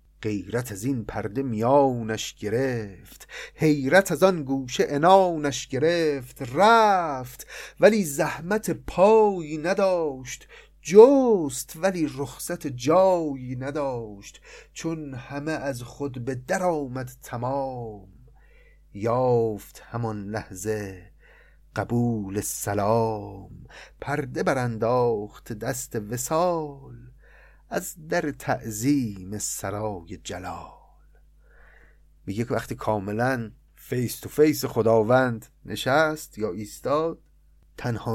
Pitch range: 110-150 Hz